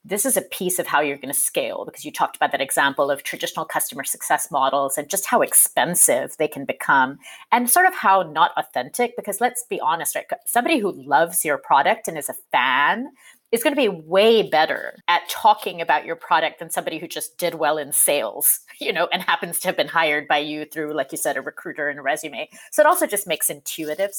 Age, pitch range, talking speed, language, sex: 30-49, 155-245 Hz, 230 wpm, English, female